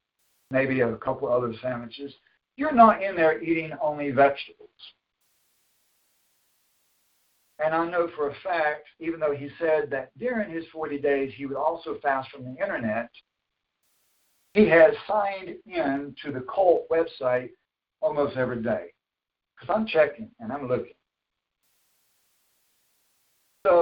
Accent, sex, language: American, male, English